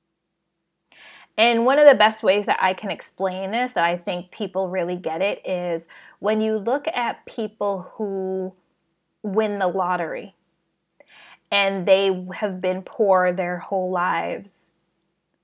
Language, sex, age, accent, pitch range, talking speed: English, female, 20-39, American, 180-225 Hz, 140 wpm